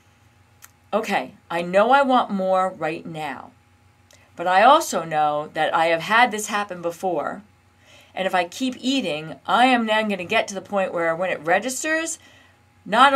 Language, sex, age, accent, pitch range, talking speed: English, female, 40-59, American, 160-235 Hz, 175 wpm